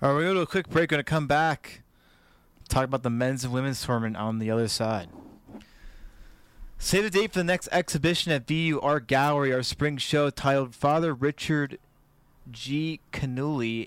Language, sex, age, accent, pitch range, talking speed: English, male, 20-39, American, 120-140 Hz, 195 wpm